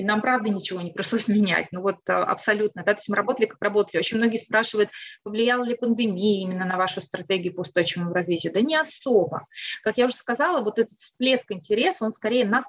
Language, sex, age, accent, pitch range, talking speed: Russian, female, 30-49, native, 185-230 Hz, 210 wpm